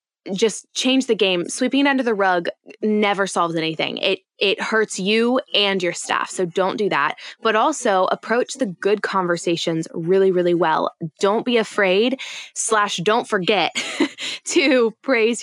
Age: 10-29